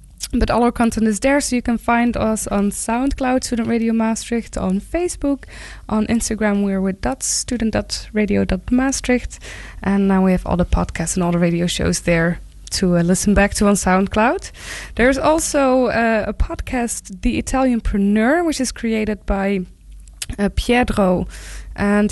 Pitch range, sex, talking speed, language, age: 180-225 Hz, female, 165 wpm, English, 20-39